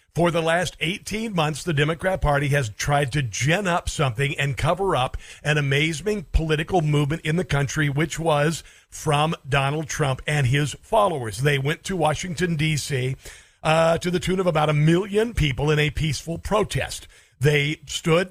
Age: 50-69